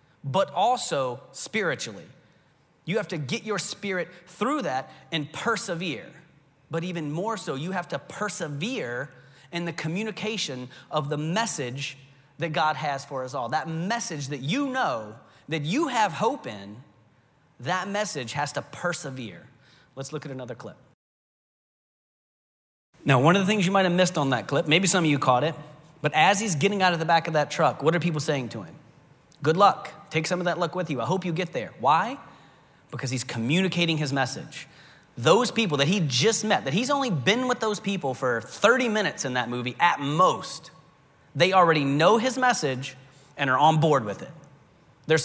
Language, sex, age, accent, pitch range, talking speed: English, male, 30-49, American, 140-185 Hz, 185 wpm